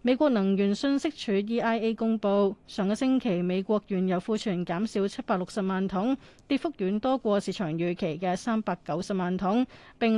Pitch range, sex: 180-230 Hz, female